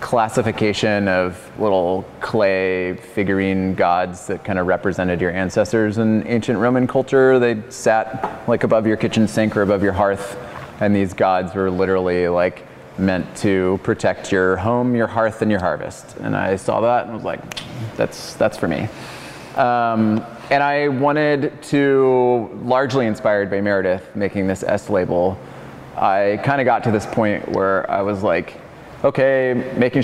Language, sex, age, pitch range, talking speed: English, male, 20-39, 100-125 Hz, 160 wpm